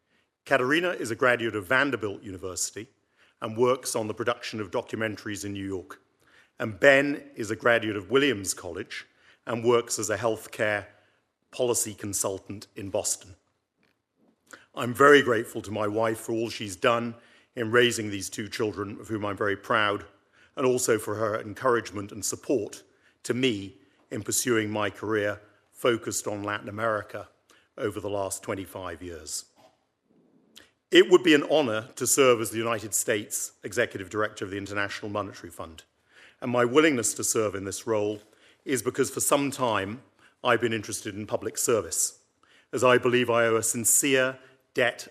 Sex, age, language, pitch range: male, 50-69, English, 105-125 Hz